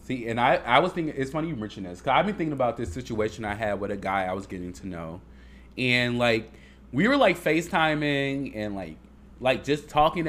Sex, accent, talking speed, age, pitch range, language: male, American, 225 wpm, 20-39, 100-150 Hz, English